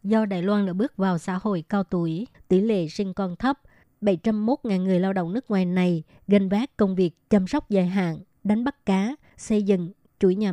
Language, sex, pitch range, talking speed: Vietnamese, male, 185-210 Hz, 215 wpm